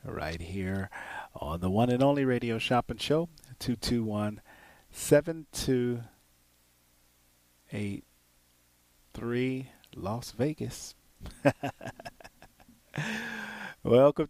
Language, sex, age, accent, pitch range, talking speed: English, male, 40-59, American, 90-140 Hz, 85 wpm